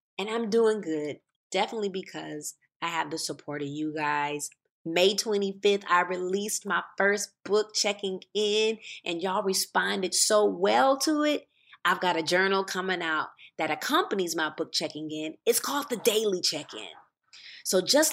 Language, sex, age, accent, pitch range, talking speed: English, female, 20-39, American, 155-210 Hz, 160 wpm